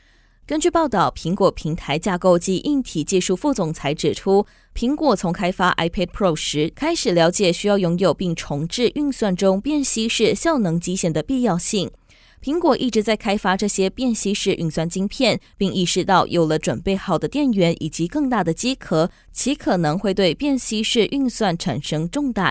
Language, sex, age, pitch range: Chinese, female, 20-39, 170-245 Hz